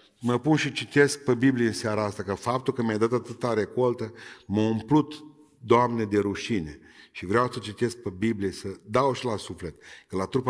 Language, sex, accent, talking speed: Romanian, male, native, 200 wpm